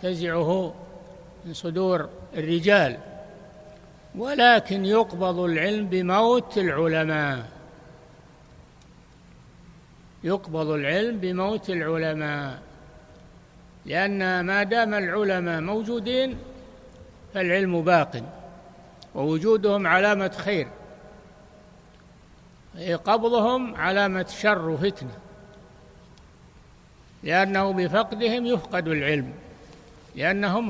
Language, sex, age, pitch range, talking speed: Arabic, male, 60-79, 165-200 Hz, 65 wpm